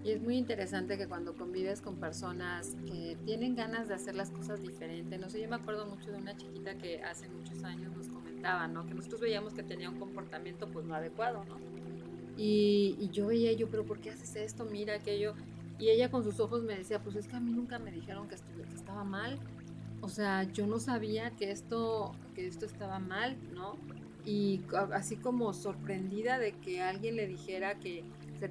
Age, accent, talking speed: 30-49, Mexican, 205 wpm